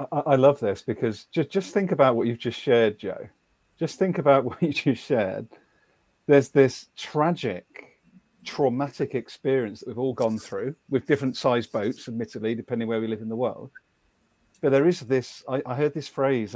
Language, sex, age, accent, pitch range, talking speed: English, male, 40-59, British, 120-160 Hz, 185 wpm